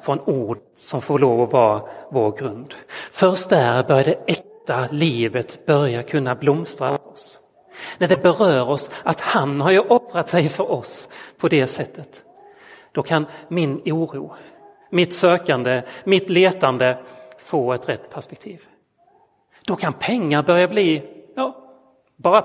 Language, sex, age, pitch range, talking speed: Swedish, male, 30-49, 130-190 Hz, 140 wpm